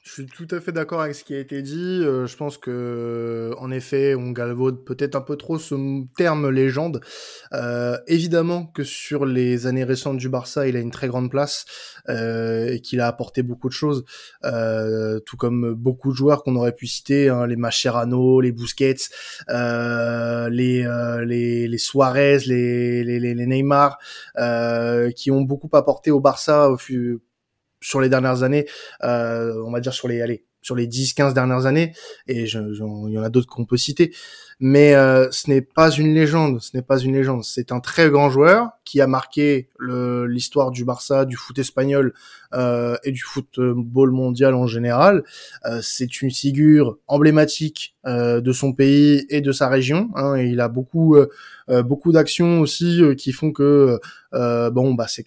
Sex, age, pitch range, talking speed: male, 20-39, 120-140 Hz, 190 wpm